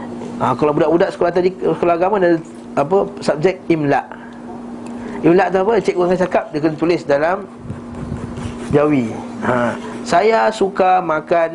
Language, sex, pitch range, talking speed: Malay, male, 145-190 Hz, 135 wpm